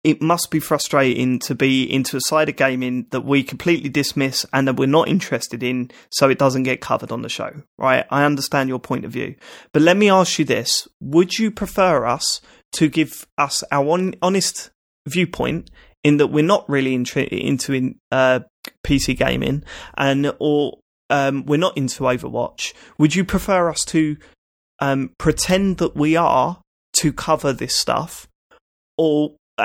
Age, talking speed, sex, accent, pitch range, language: 20-39, 175 wpm, male, British, 140-170 Hz, English